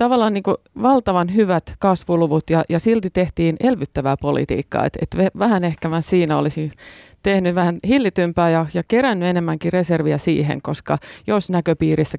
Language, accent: Finnish, native